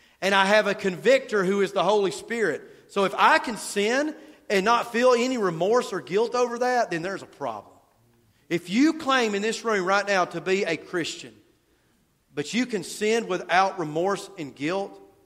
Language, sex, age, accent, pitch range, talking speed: English, male, 40-59, American, 160-210 Hz, 190 wpm